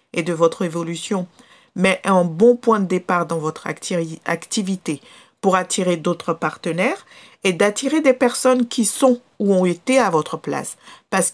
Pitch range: 170-215 Hz